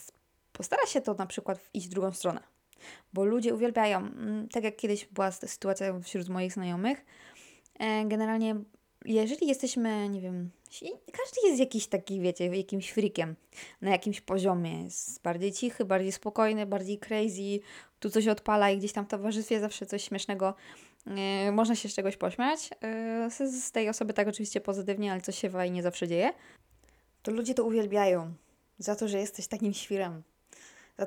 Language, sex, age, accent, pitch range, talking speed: Polish, female, 20-39, native, 195-225 Hz, 160 wpm